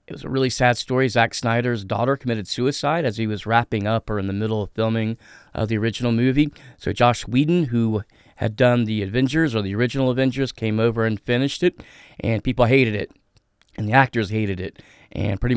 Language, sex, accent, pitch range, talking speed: English, male, American, 110-130 Hz, 210 wpm